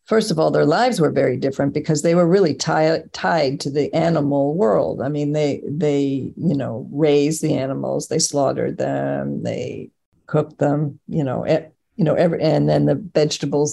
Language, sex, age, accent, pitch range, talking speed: English, female, 50-69, American, 140-165 Hz, 190 wpm